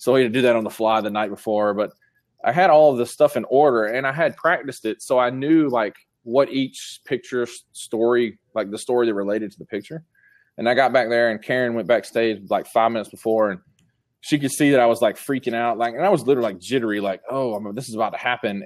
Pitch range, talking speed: 105-125 Hz, 255 wpm